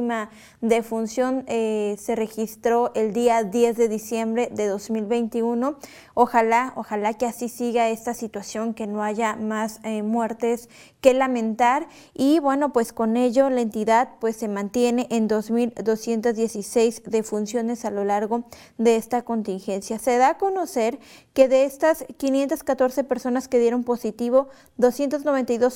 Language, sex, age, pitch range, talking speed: Spanish, female, 20-39, 225-260 Hz, 135 wpm